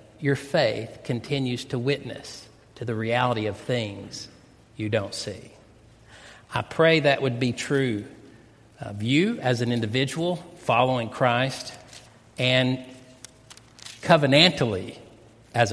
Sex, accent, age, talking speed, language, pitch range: male, American, 50-69, 110 wpm, English, 115-145 Hz